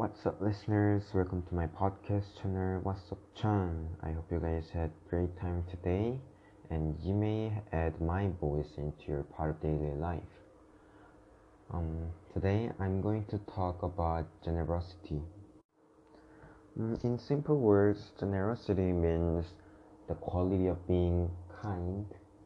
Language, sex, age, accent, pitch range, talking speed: English, male, 20-39, Korean, 85-105 Hz, 135 wpm